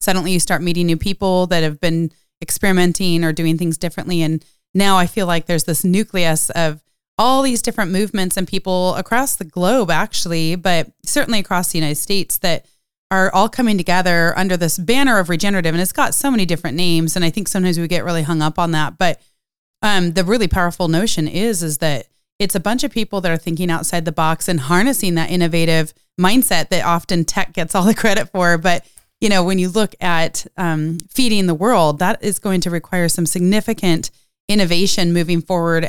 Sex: female